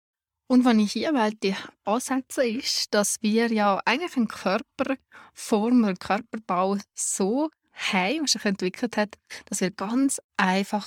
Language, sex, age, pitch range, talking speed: German, female, 20-39, 195-240 Hz, 140 wpm